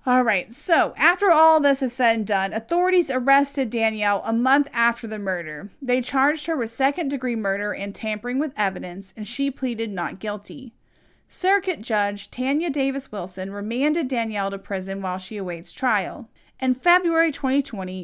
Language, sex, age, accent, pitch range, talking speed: English, female, 40-59, American, 205-275 Hz, 160 wpm